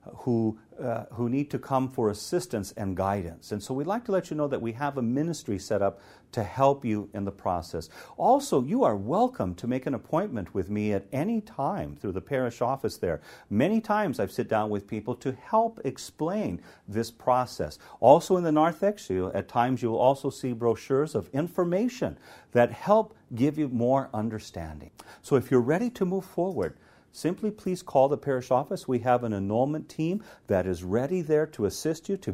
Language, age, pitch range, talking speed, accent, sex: English, 50-69, 100-155 Hz, 195 wpm, American, male